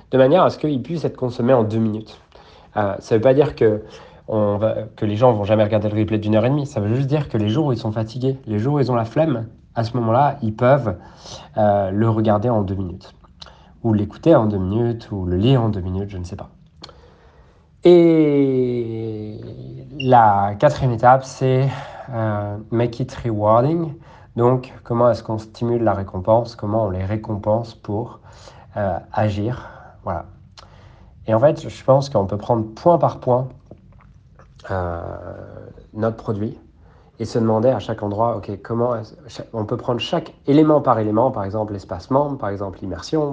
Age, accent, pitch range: 40-59, French, 100-125 Hz